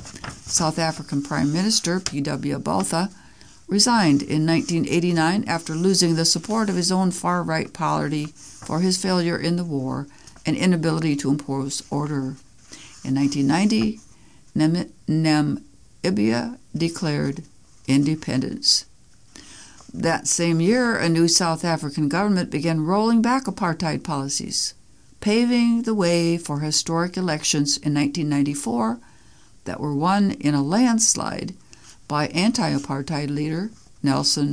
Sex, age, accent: female, 60-79, American